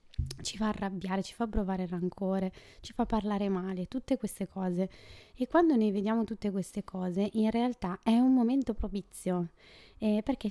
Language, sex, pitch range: Italian, female, 185-230 Hz